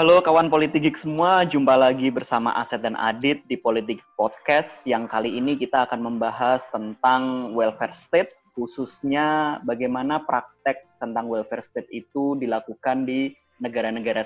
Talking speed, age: 135 wpm, 20-39